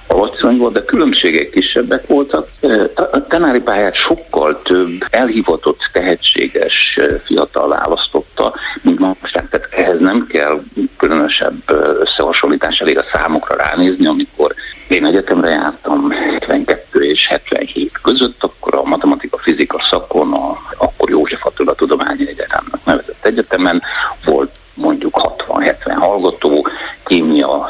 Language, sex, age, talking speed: Hungarian, male, 60-79, 115 wpm